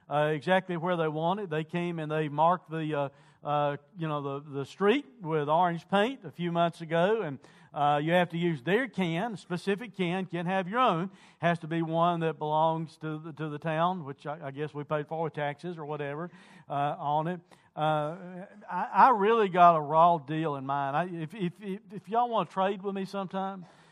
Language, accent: English, American